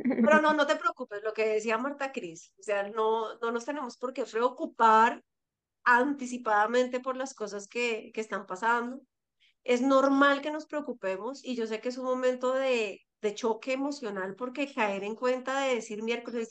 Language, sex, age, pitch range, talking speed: Spanish, female, 30-49, 225-285 Hz, 180 wpm